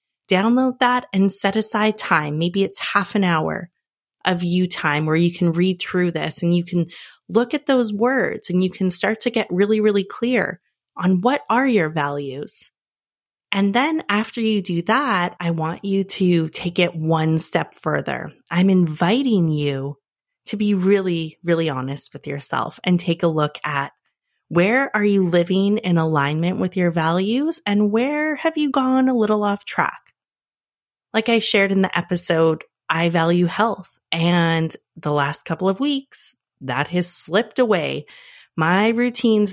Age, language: 30-49, English